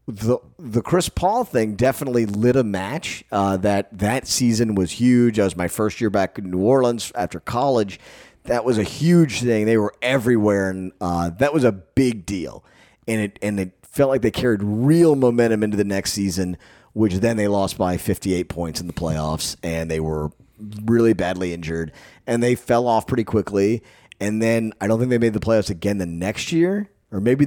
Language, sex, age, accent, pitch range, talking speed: English, male, 30-49, American, 100-125 Hz, 200 wpm